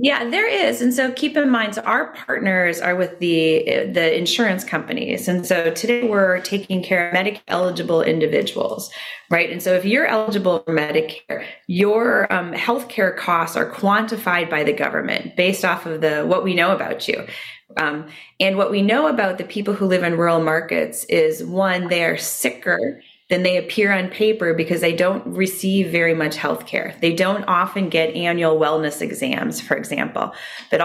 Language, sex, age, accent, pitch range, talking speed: English, female, 20-39, American, 165-200 Hz, 185 wpm